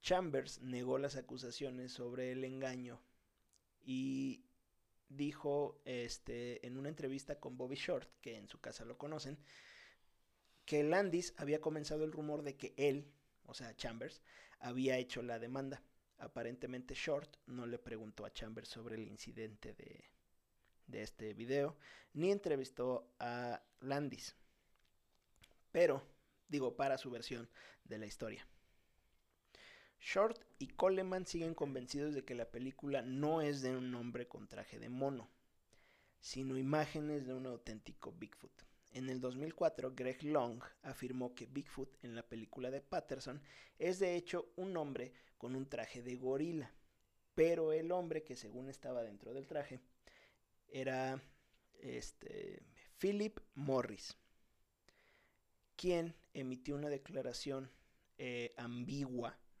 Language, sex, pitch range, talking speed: Spanish, male, 120-150 Hz, 130 wpm